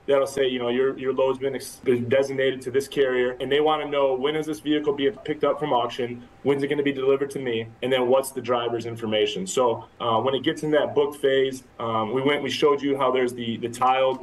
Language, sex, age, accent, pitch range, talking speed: English, male, 20-39, American, 125-150 Hz, 260 wpm